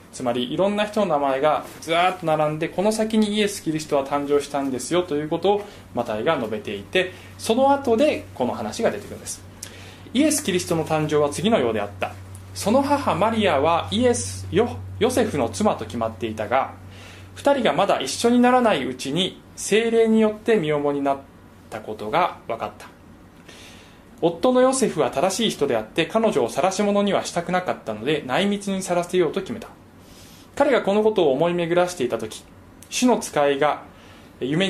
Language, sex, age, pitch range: Japanese, male, 20-39, 130-215 Hz